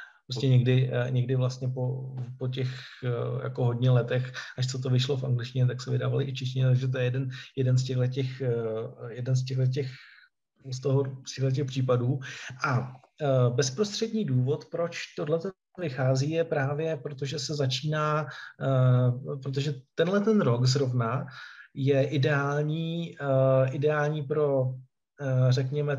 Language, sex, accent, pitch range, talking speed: Czech, male, native, 130-150 Hz, 130 wpm